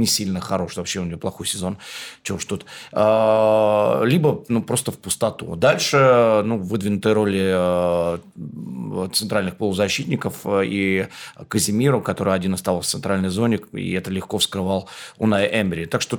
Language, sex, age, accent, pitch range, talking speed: Russian, male, 30-49, native, 95-115 Hz, 145 wpm